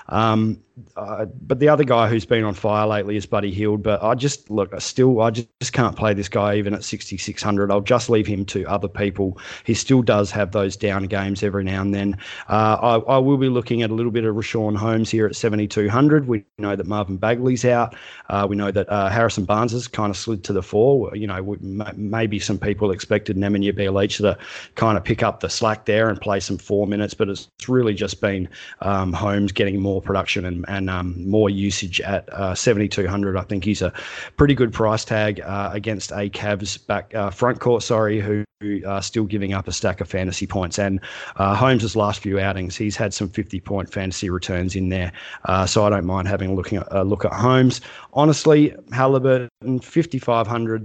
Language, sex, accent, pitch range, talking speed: English, male, Australian, 100-115 Hz, 215 wpm